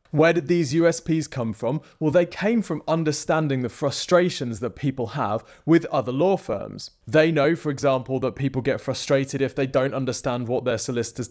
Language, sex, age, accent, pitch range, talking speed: English, male, 20-39, British, 125-160 Hz, 185 wpm